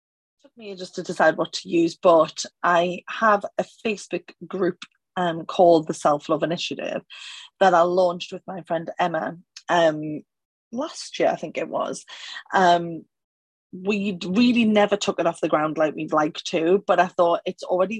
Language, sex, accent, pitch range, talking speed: English, female, British, 170-210 Hz, 170 wpm